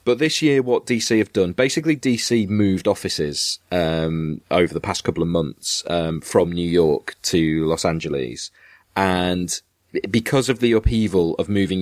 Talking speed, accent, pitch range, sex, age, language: 160 wpm, British, 90-110 Hz, male, 30-49, English